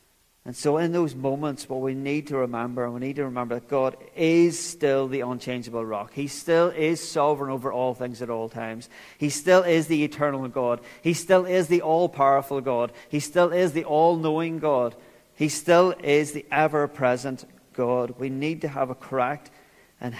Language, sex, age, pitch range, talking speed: English, male, 40-59, 120-145 Hz, 185 wpm